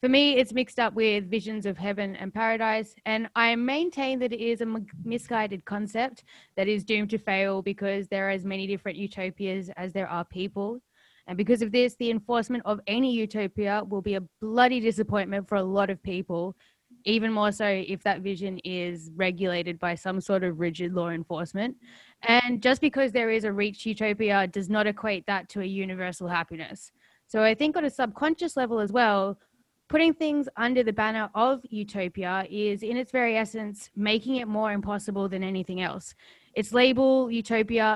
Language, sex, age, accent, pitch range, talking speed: English, female, 10-29, Australian, 195-245 Hz, 185 wpm